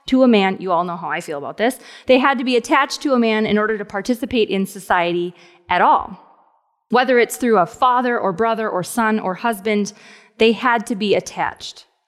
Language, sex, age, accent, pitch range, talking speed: English, female, 30-49, American, 200-250 Hz, 215 wpm